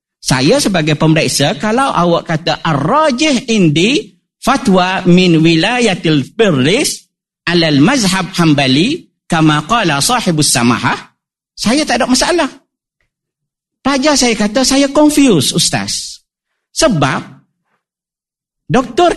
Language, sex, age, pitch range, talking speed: Malay, male, 50-69, 150-220 Hz, 95 wpm